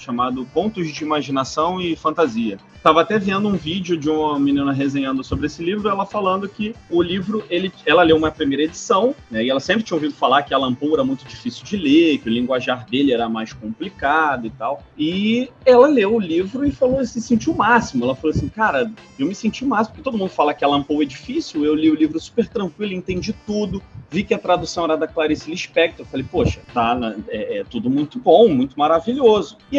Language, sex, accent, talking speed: Portuguese, male, Brazilian, 220 wpm